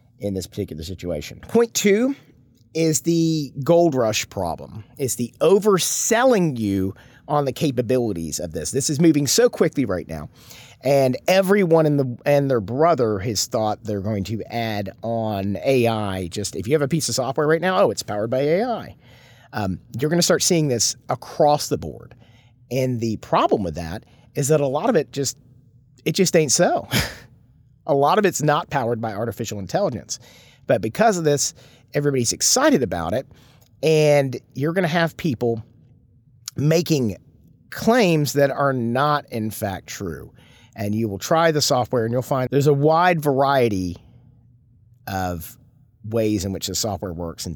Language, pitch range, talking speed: English, 110-150 Hz, 165 wpm